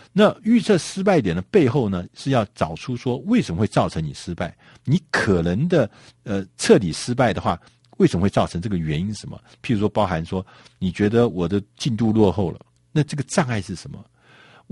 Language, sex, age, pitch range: Chinese, male, 50-69, 95-135 Hz